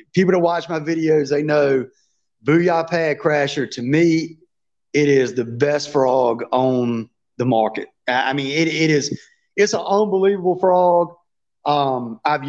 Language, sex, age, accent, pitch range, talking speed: English, male, 30-49, American, 135-175 Hz, 150 wpm